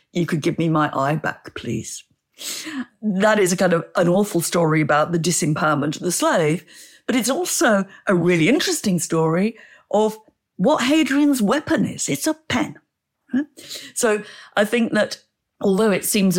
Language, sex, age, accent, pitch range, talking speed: English, female, 60-79, British, 155-210 Hz, 160 wpm